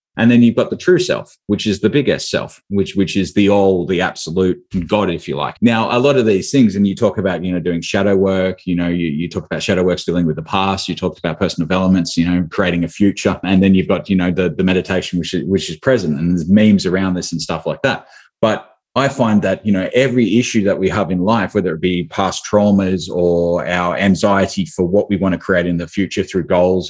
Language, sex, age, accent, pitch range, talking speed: English, male, 20-39, Australian, 90-110 Hz, 255 wpm